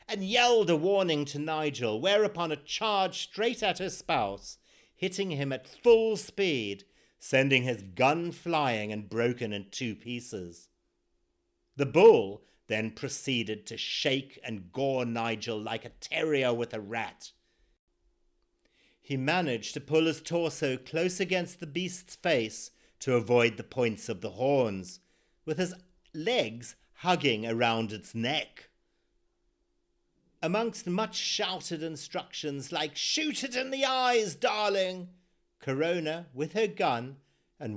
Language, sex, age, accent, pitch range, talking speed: English, male, 50-69, British, 110-180 Hz, 130 wpm